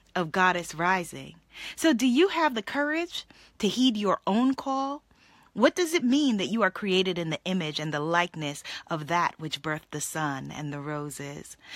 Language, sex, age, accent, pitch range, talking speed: English, female, 30-49, American, 170-260 Hz, 190 wpm